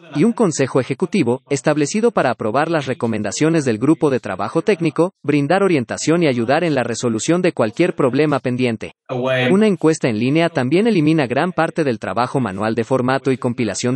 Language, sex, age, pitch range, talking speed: English, male, 40-59, 125-165 Hz, 170 wpm